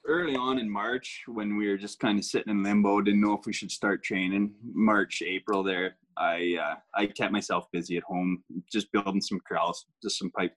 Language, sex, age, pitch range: English, male, 20-39, 90-105 Hz